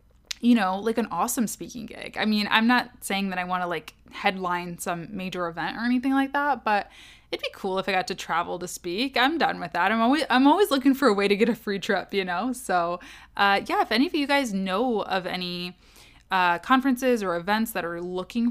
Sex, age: female, 20-39